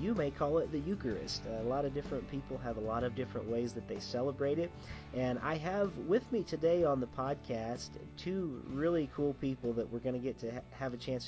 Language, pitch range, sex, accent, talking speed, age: English, 115-130 Hz, male, American, 230 wpm, 40-59